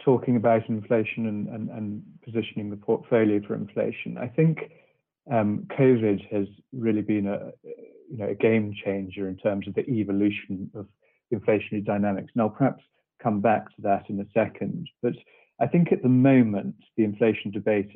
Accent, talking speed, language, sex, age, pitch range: British, 165 wpm, English, male, 40-59, 100-120 Hz